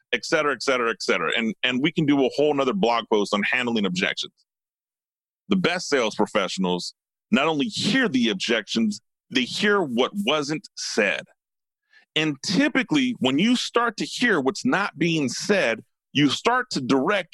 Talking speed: 165 wpm